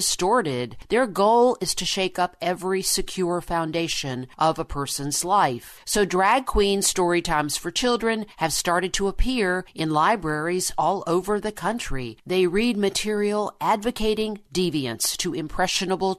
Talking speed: 140 wpm